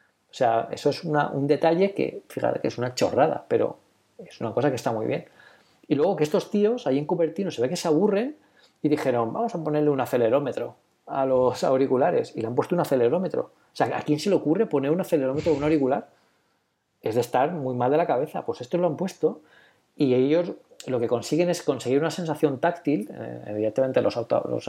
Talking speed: 220 wpm